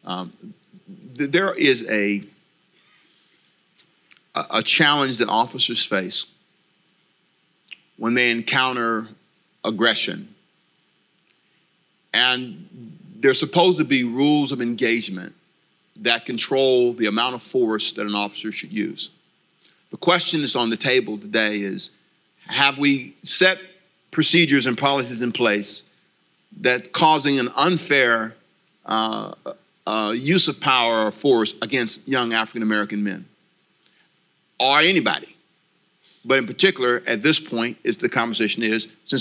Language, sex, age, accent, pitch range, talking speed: English, male, 50-69, American, 115-155 Hz, 120 wpm